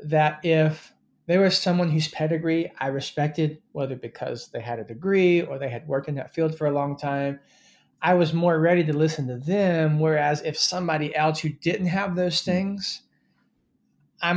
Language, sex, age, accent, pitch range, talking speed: English, male, 20-39, American, 140-170 Hz, 185 wpm